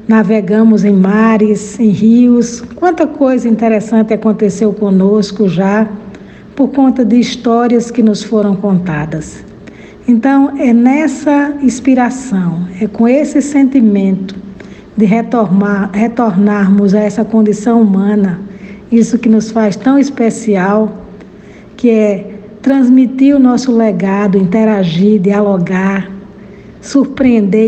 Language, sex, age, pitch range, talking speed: Portuguese, female, 60-79, 205-245 Hz, 105 wpm